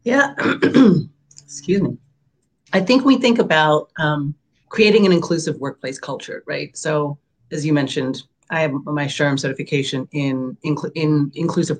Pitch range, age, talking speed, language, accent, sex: 140-175 Hz, 30-49, 140 wpm, English, American, female